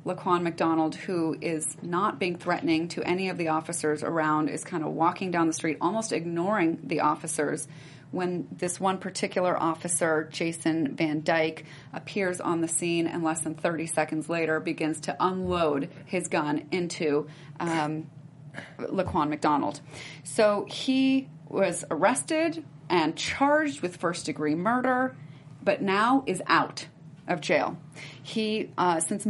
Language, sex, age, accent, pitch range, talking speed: English, female, 30-49, American, 155-185 Hz, 140 wpm